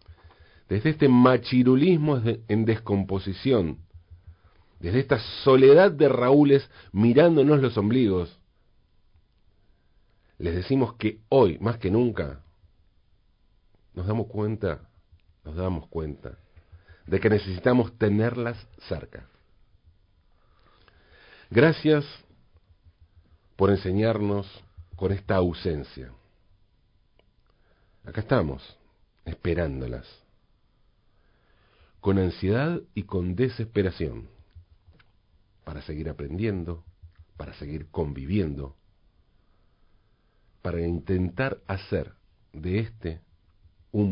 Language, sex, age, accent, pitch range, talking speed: Spanish, male, 50-69, Argentinian, 85-110 Hz, 80 wpm